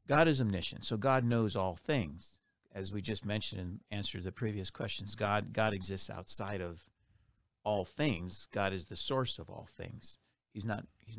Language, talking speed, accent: English, 190 wpm, American